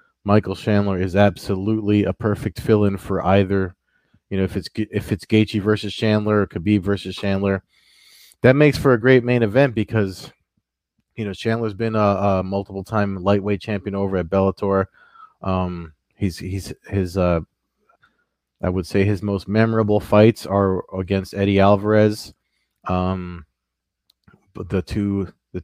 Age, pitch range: 20-39, 95-110 Hz